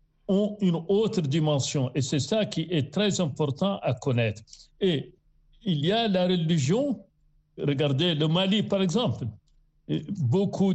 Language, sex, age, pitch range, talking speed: French, male, 60-79, 150-185 Hz, 140 wpm